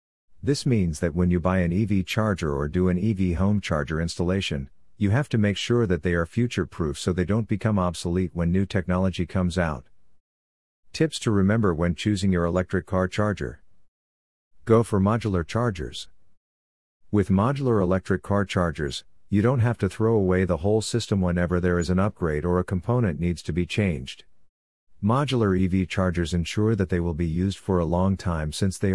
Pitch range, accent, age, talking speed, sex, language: 85-105 Hz, American, 50-69, 185 wpm, male, English